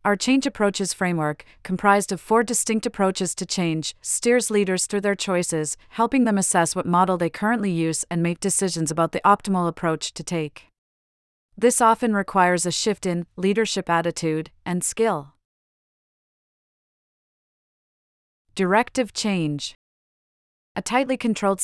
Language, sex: English, female